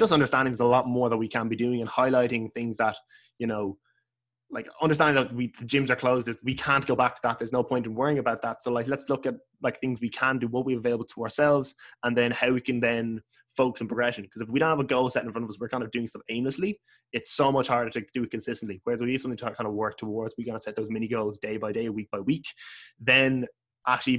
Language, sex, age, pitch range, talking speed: English, male, 10-29, 110-125 Hz, 285 wpm